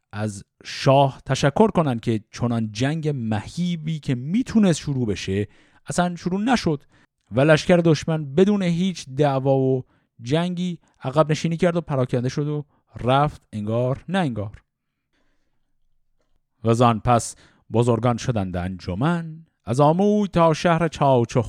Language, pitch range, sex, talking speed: Persian, 125-170 Hz, male, 120 wpm